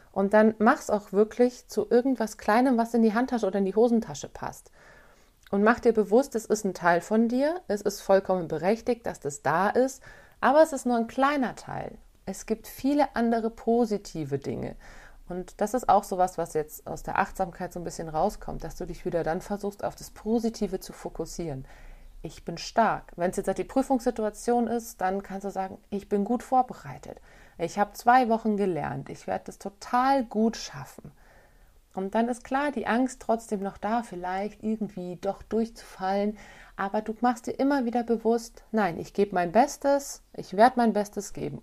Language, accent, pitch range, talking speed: German, German, 185-235 Hz, 190 wpm